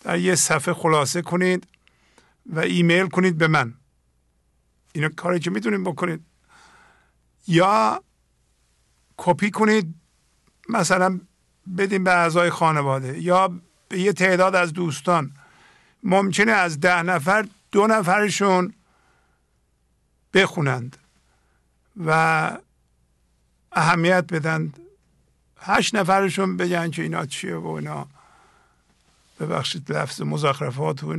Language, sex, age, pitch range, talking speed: English, male, 50-69, 120-190 Hz, 95 wpm